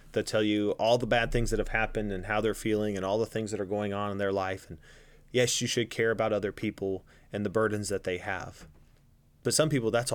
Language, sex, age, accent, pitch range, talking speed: English, male, 30-49, American, 100-125 Hz, 255 wpm